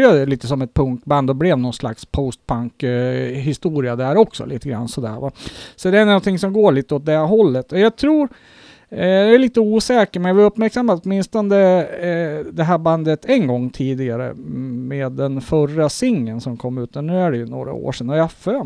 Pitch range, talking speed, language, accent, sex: 135-205 Hz, 210 wpm, Swedish, Norwegian, male